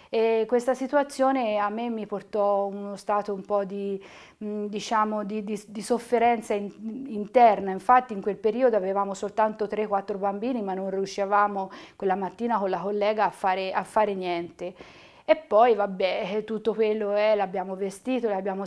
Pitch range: 200-235 Hz